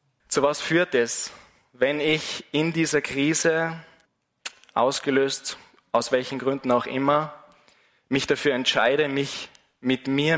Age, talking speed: 20-39, 120 wpm